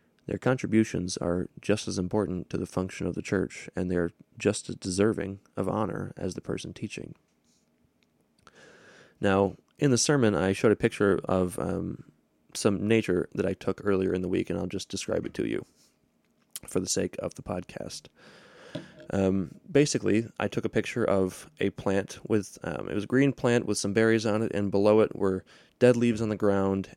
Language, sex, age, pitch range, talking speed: English, male, 20-39, 95-110 Hz, 190 wpm